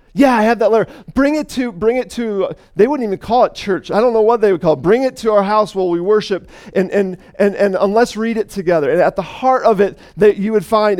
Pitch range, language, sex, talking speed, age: 175-225 Hz, English, male, 280 wpm, 40-59